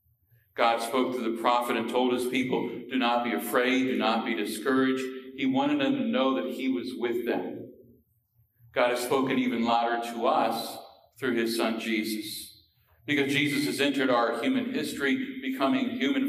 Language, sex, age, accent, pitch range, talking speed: English, male, 50-69, American, 115-135 Hz, 175 wpm